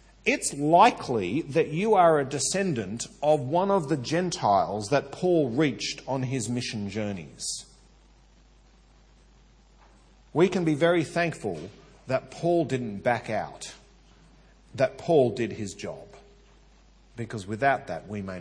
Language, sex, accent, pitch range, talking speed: English, male, Australian, 130-180 Hz, 125 wpm